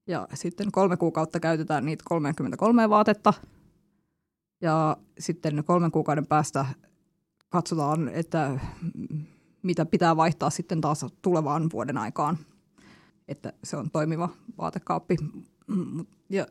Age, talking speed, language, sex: 20-39, 105 wpm, Finnish, female